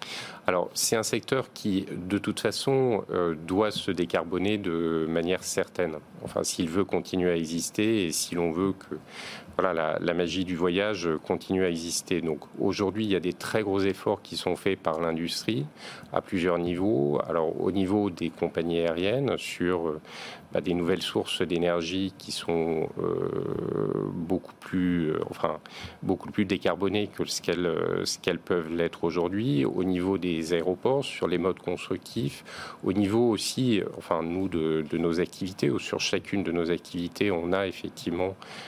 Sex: male